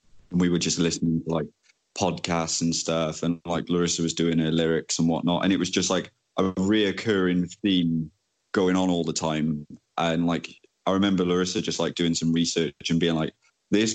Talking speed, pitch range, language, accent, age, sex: 200 wpm, 80-90 Hz, English, British, 20-39, male